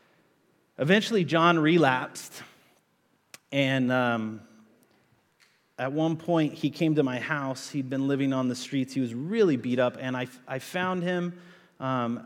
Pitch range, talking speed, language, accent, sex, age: 115-145 Hz, 145 wpm, English, American, male, 30-49